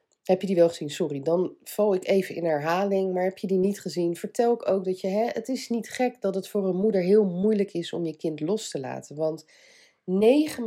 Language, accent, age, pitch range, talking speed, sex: Dutch, Dutch, 40-59, 160-205 Hz, 240 wpm, female